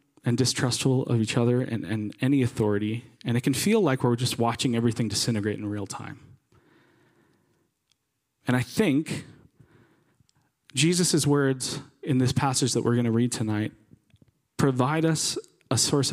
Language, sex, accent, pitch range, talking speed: English, male, American, 115-140 Hz, 150 wpm